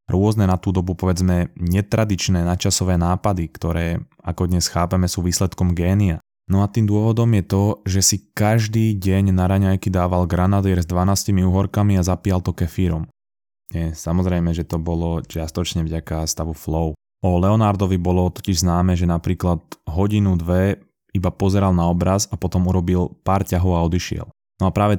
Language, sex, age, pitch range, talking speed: Slovak, male, 20-39, 85-95 Hz, 165 wpm